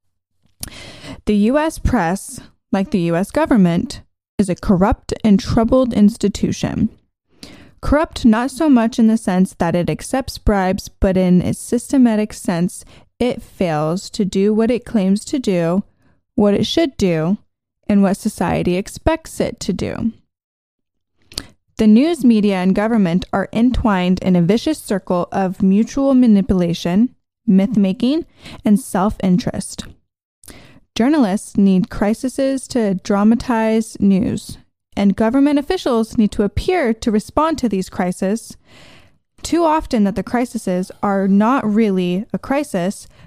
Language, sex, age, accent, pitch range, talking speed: English, female, 20-39, American, 195-240 Hz, 130 wpm